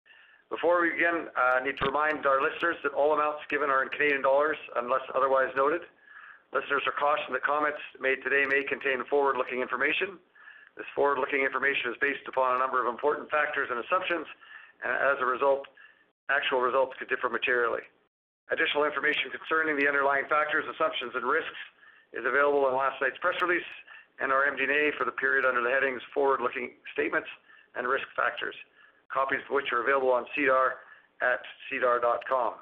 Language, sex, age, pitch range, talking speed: English, male, 50-69, 130-155 Hz, 170 wpm